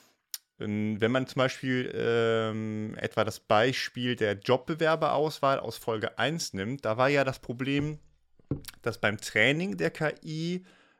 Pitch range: 105-135 Hz